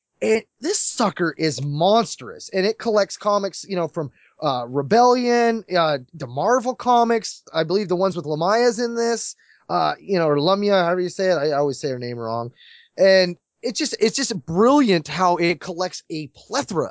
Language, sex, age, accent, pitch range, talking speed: English, male, 20-39, American, 155-210 Hz, 190 wpm